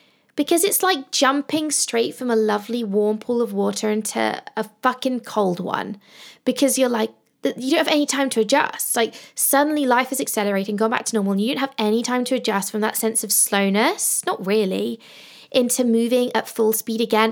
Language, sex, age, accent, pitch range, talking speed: English, female, 20-39, British, 210-280 Hz, 200 wpm